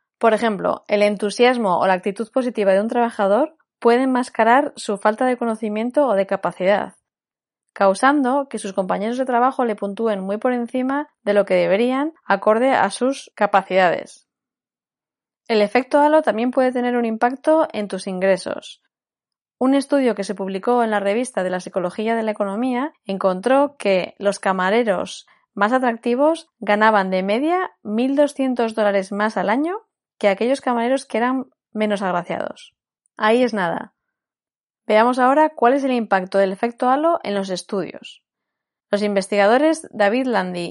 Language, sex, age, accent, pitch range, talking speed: Spanish, female, 20-39, Spanish, 200-260 Hz, 155 wpm